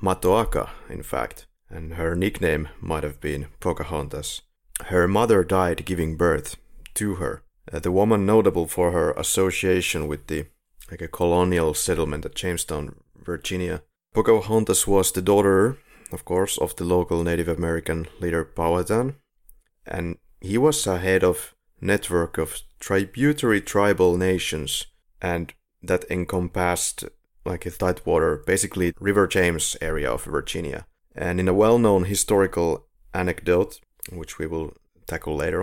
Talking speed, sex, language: 135 wpm, male, English